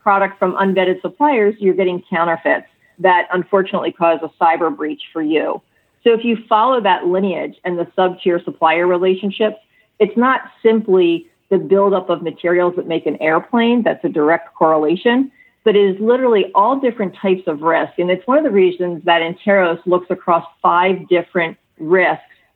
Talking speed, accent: 170 wpm, American